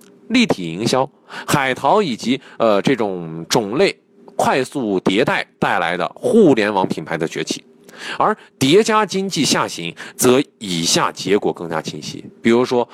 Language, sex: Chinese, male